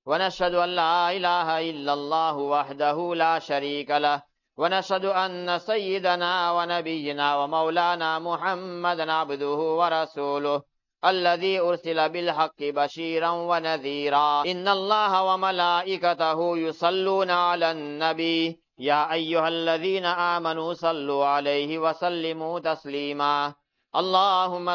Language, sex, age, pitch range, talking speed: English, male, 50-69, 155-175 Hz, 90 wpm